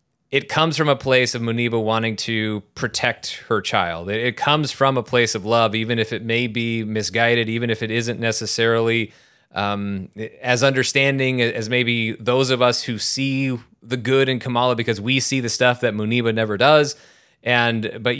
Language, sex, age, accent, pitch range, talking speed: English, male, 20-39, American, 115-130 Hz, 180 wpm